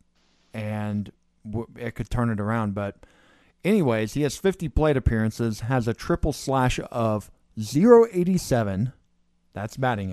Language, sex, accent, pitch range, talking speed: English, male, American, 105-130 Hz, 125 wpm